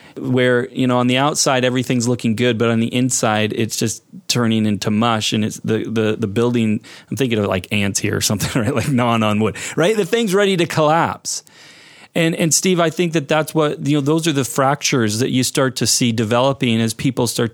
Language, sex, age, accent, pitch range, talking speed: English, male, 30-49, American, 110-135 Hz, 225 wpm